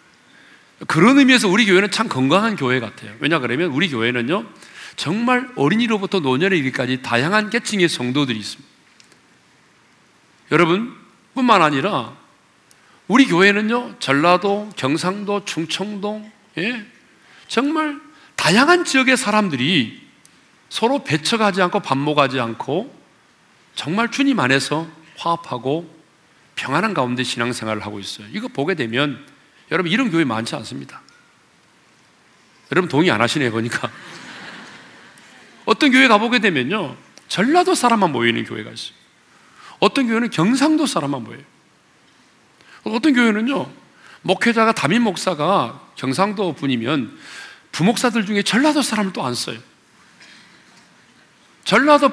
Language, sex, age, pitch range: Korean, male, 40-59, 145-235 Hz